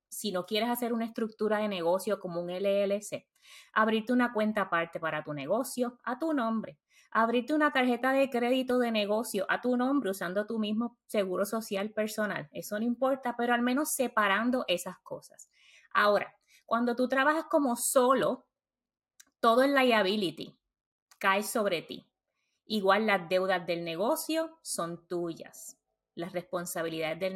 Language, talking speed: Spanish, 150 wpm